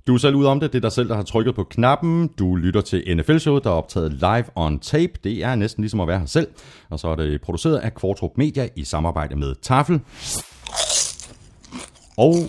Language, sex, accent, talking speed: Danish, male, native, 220 wpm